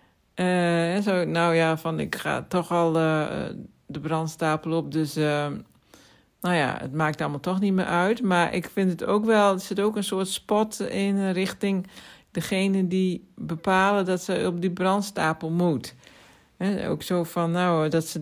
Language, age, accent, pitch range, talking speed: Dutch, 60-79, Dutch, 155-190 Hz, 180 wpm